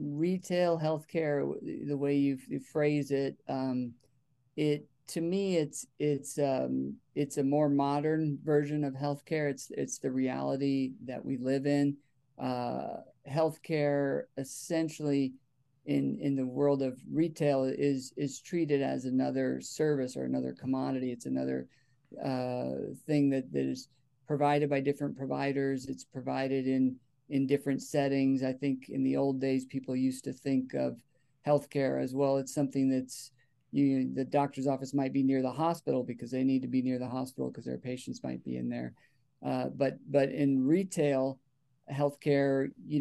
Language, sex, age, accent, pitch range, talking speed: English, male, 50-69, American, 130-145 Hz, 155 wpm